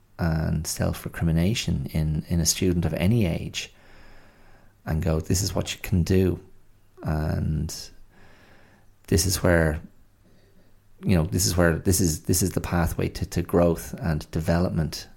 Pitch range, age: 85-100 Hz, 30-49